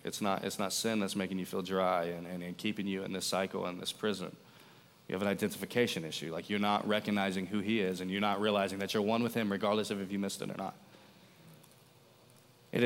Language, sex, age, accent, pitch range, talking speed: English, male, 20-39, American, 105-170 Hz, 240 wpm